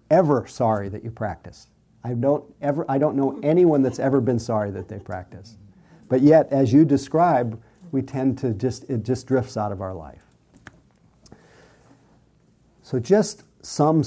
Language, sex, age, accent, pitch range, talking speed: English, male, 50-69, American, 115-140 Hz, 160 wpm